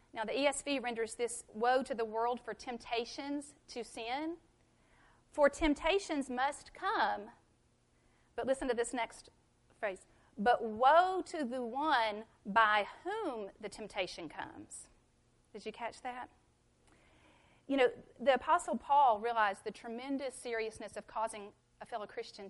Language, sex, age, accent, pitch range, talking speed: English, female, 40-59, American, 220-285 Hz, 135 wpm